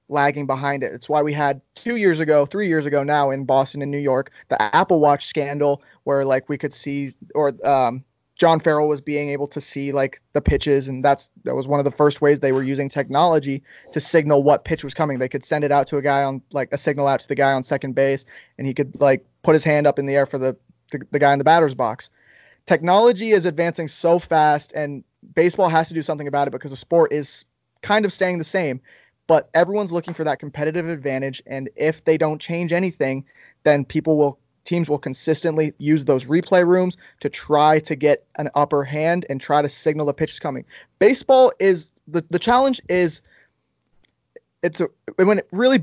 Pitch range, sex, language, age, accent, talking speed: 140-165 Hz, male, English, 20-39, American, 220 wpm